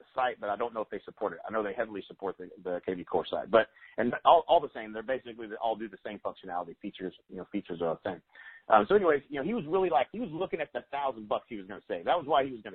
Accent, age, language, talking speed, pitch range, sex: American, 40-59, English, 310 wpm, 110-145 Hz, male